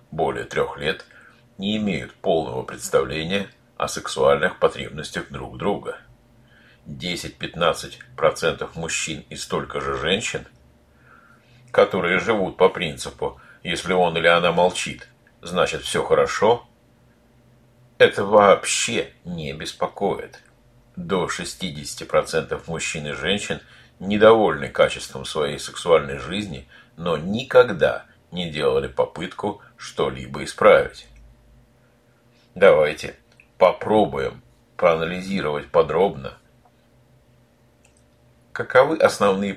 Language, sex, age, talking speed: Russian, male, 50-69, 85 wpm